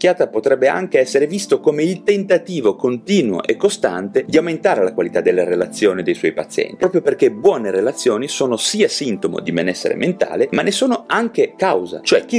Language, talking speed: Italian, 175 wpm